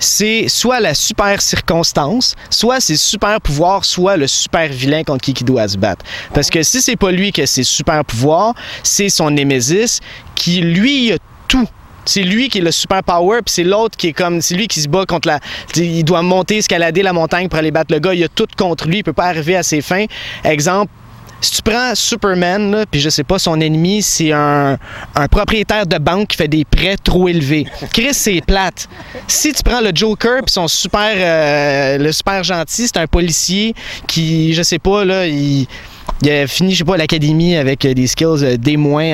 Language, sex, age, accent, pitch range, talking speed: French, male, 30-49, Canadian, 150-195 Hz, 215 wpm